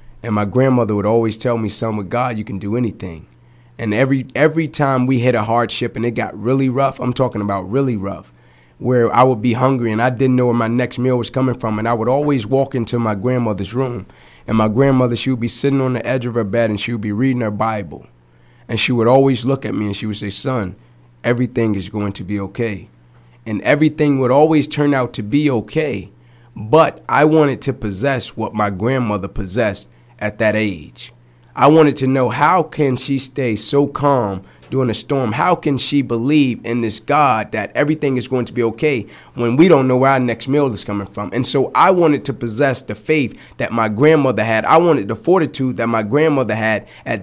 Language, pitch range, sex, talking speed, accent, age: English, 110-135 Hz, male, 220 wpm, American, 30-49